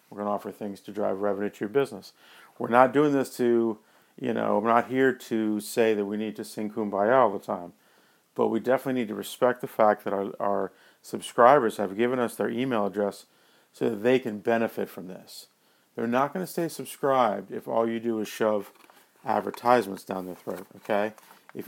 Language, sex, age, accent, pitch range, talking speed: English, male, 40-59, American, 100-120 Hz, 210 wpm